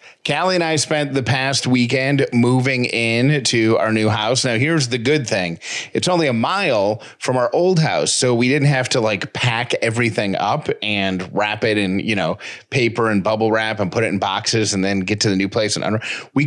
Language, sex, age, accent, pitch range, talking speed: English, male, 30-49, American, 110-135 Hz, 215 wpm